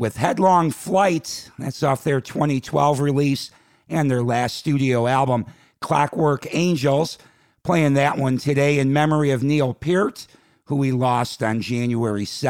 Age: 50-69